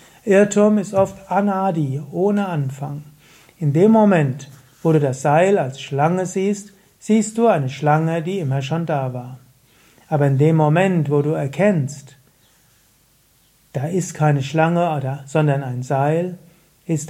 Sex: male